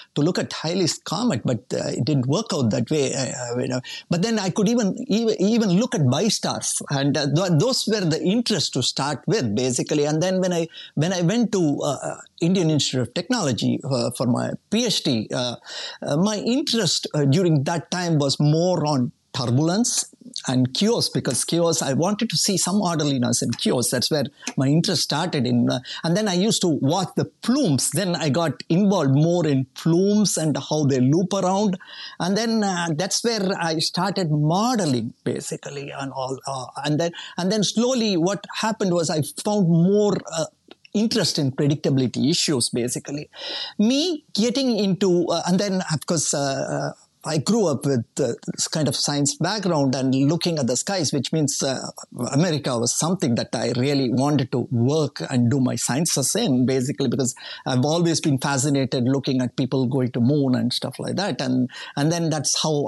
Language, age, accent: English, 60-79, Indian